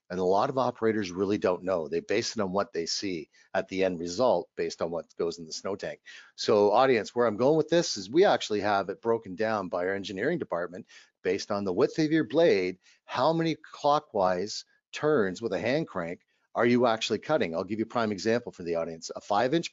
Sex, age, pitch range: male, 50-69, 105-150 Hz